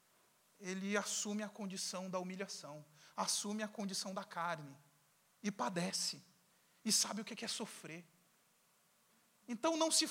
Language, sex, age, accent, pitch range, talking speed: Portuguese, male, 40-59, Brazilian, 185-230 Hz, 130 wpm